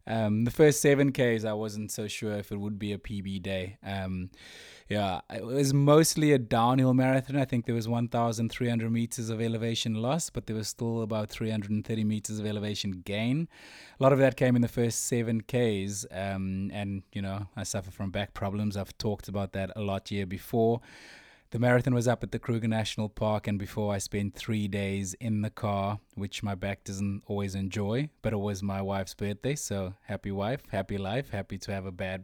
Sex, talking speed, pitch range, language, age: male, 200 wpm, 100-120 Hz, English, 20-39